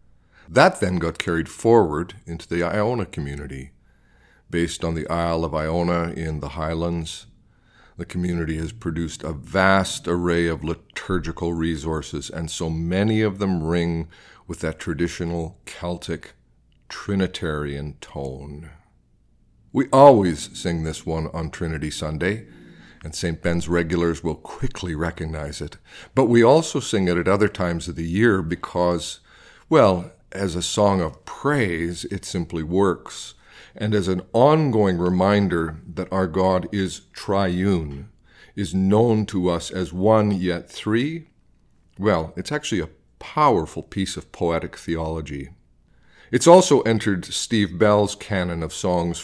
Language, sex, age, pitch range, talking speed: English, male, 50-69, 80-100 Hz, 135 wpm